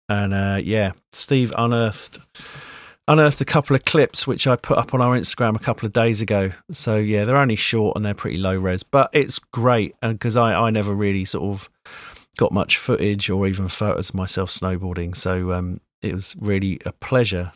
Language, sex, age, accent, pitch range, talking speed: English, male, 40-59, British, 100-125 Hz, 200 wpm